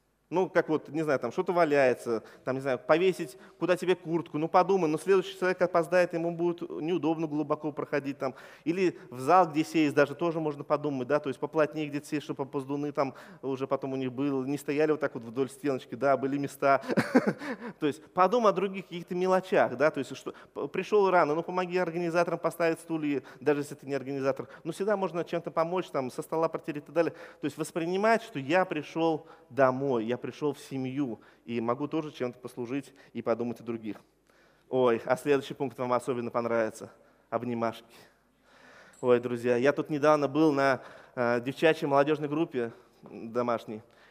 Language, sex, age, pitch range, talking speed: Russian, male, 20-39, 135-175 Hz, 185 wpm